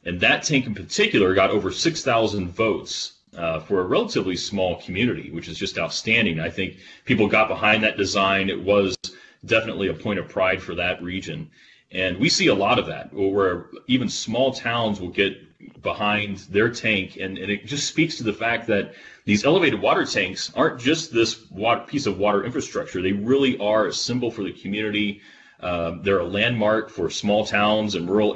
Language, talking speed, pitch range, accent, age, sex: English, 190 wpm, 95-115 Hz, American, 30-49, male